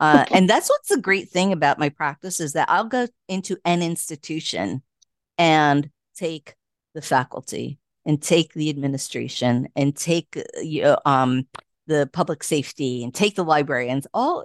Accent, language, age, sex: American, English, 50-69, female